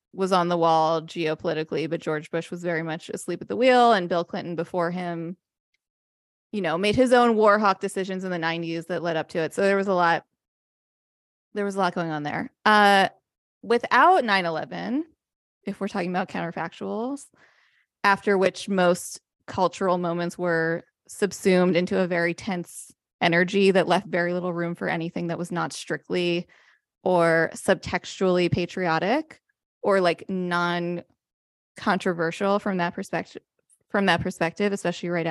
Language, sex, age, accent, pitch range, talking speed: English, female, 20-39, American, 170-205 Hz, 160 wpm